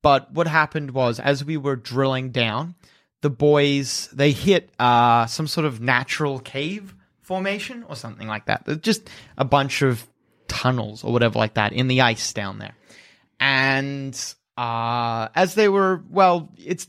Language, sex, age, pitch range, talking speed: English, male, 30-49, 130-180 Hz, 160 wpm